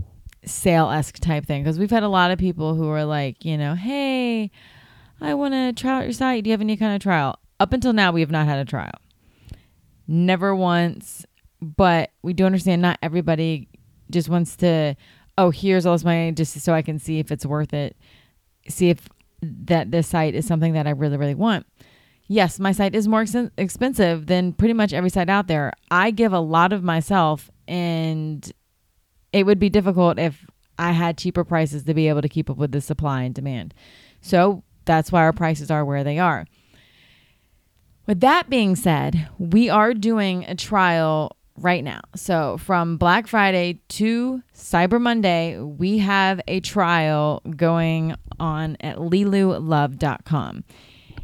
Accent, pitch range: American, 155-195 Hz